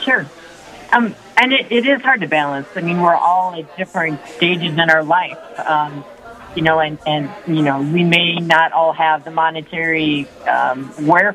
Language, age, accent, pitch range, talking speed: English, 40-59, American, 150-190 Hz, 185 wpm